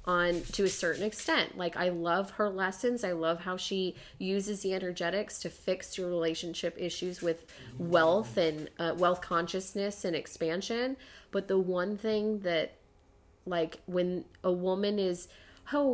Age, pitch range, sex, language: 30-49, 170-205 Hz, female, English